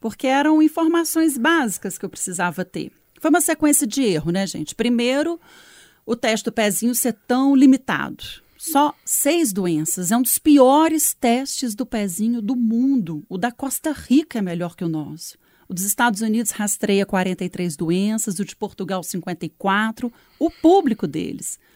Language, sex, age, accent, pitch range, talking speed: Portuguese, female, 40-59, Brazilian, 195-275 Hz, 160 wpm